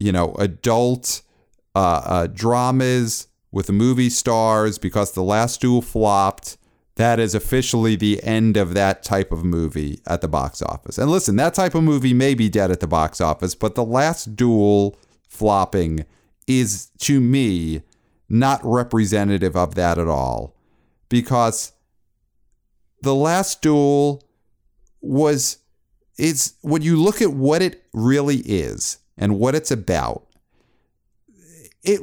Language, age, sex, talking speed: English, 40-59, male, 140 wpm